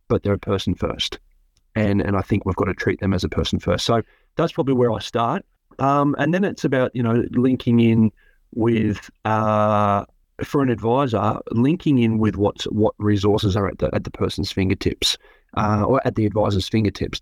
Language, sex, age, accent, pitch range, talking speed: English, male, 30-49, Australian, 100-115 Hz, 200 wpm